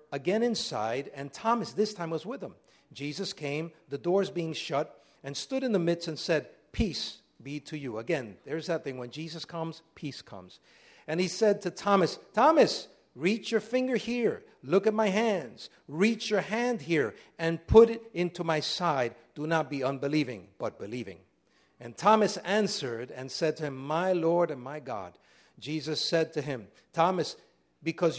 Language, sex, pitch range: English, male, 140-190 Hz